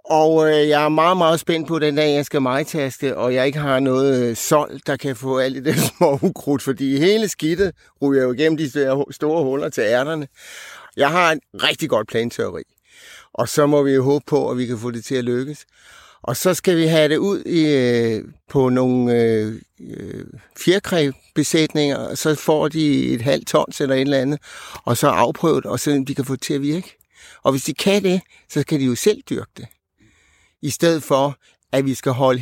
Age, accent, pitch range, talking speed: 60-79, native, 115-155 Hz, 210 wpm